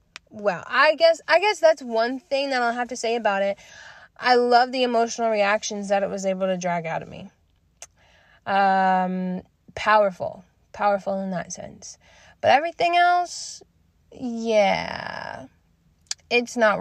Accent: American